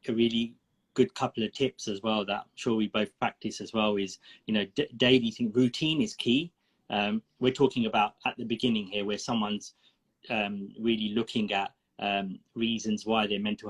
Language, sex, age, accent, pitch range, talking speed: English, male, 20-39, British, 105-130 Hz, 190 wpm